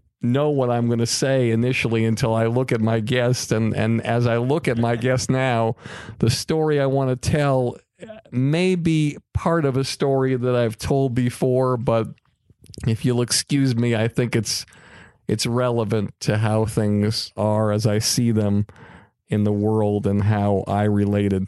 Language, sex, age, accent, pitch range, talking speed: English, male, 50-69, American, 105-120 Hz, 175 wpm